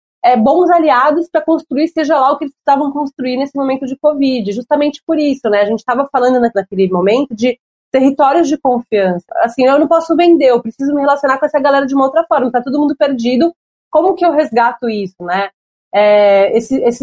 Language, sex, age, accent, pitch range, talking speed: Portuguese, female, 30-49, Brazilian, 225-275 Hz, 205 wpm